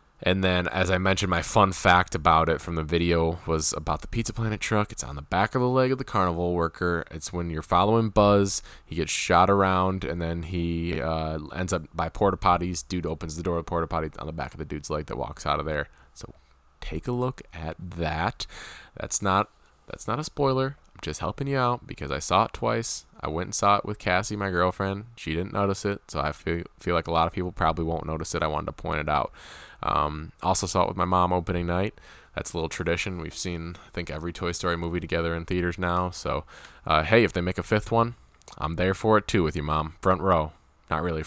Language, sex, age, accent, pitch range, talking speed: English, male, 20-39, American, 80-100 Hz, 240 wpm